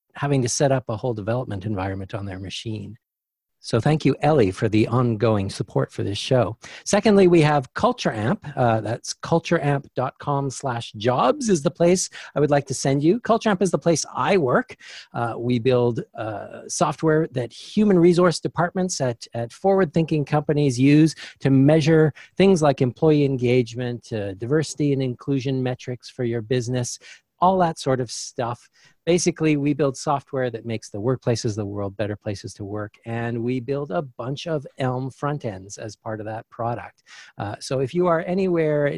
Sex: male